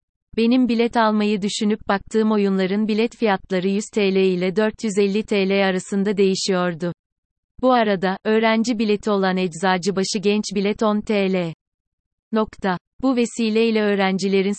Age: 30-49